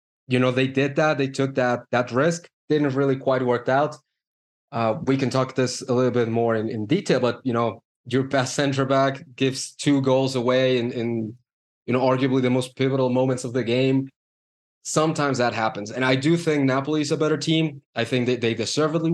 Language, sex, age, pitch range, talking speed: English, male, 20-39, 120-140 Hz, 210 wpm